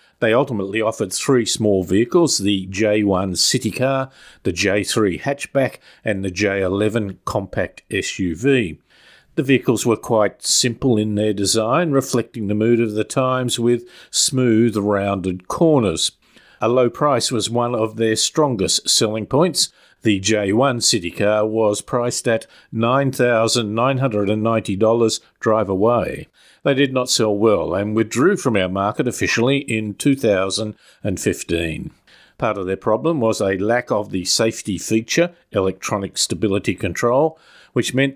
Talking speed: 135 wpm